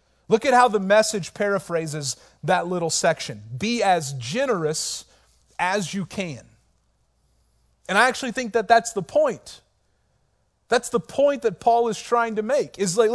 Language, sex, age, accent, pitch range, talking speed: English, male, 40-59, American, 175-240 Hz, 150 wpm